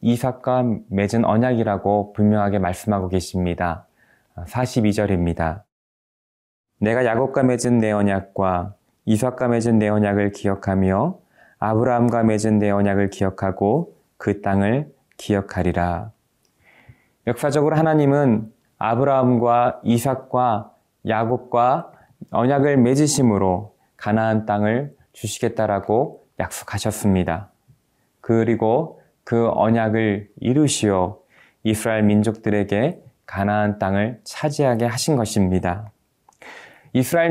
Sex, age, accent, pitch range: male, 20-39, native, 100-130 Hz